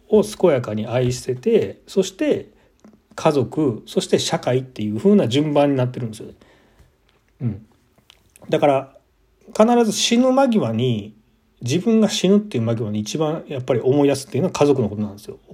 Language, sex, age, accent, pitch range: Japanese, male, 40-59, native, 115-180 Hz